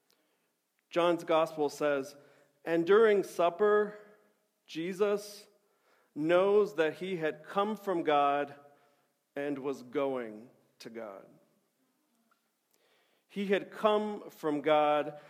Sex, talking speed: male, 95 wpm